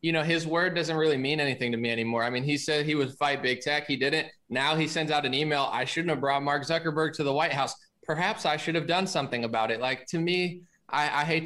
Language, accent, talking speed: English, American, 270 wpm